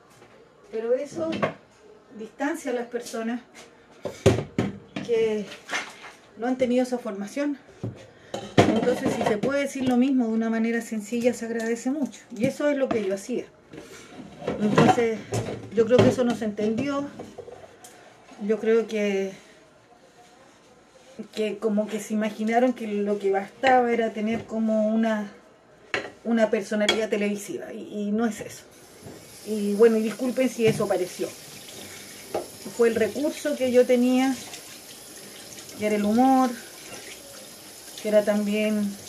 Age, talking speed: 40-59, 130 wpm